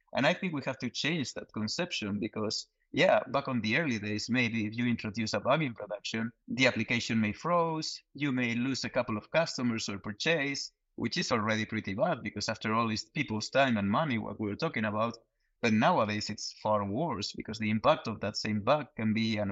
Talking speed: 210 wpm